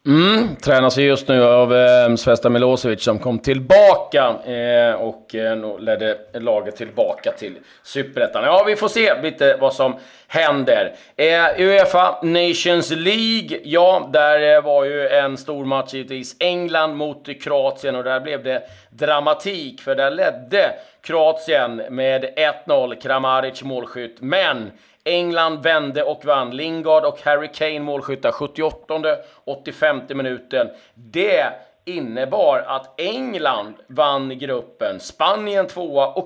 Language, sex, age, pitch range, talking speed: Swedish, male, 30-49, 130-175 Hz, 130 wpm